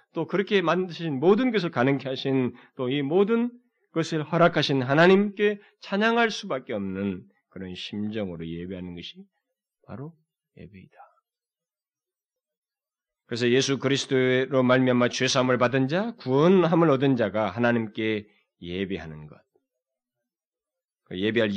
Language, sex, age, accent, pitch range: Korean, male, 30-49, native, 105-175 Hz